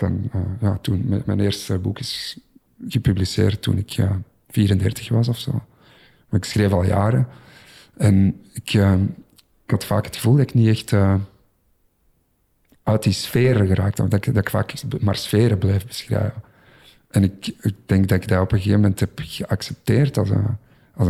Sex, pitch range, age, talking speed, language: male, 100-120 Hz, 50-69, 180 wpm, Dutch